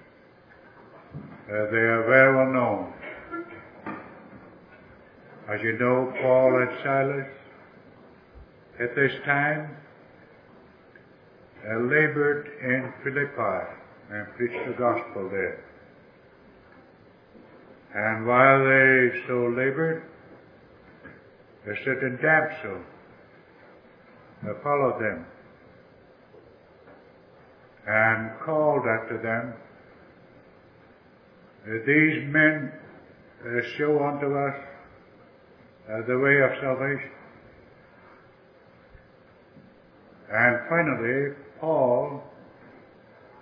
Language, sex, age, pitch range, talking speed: English, male, 60-79, 120-150 Hz, 70 wpm